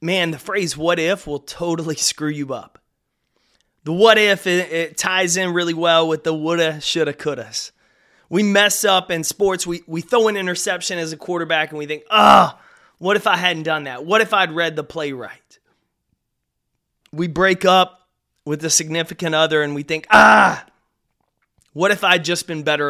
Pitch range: 150-180 Hz